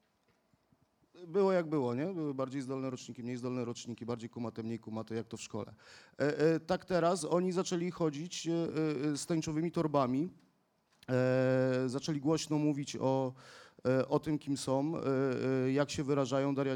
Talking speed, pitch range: 140 wpm, 130-160 Hz